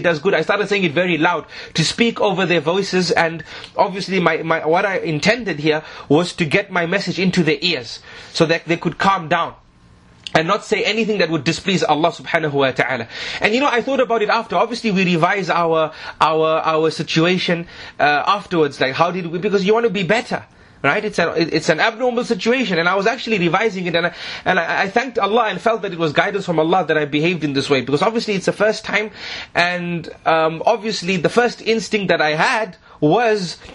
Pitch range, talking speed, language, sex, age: 165-215 Hz, 215 wpm, English, male, 30-49